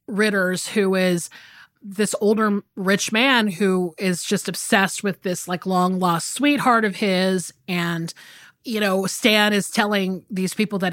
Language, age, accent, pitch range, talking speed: English, 30-49, American, 185-240 Hz, 150 wpm